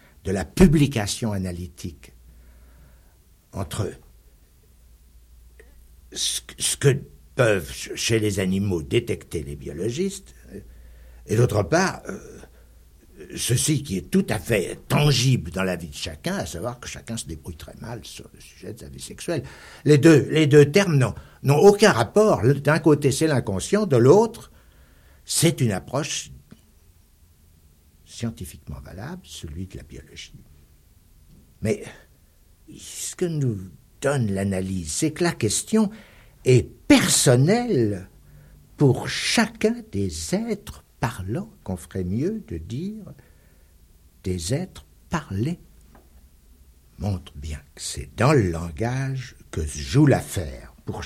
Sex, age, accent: male, 60-79, French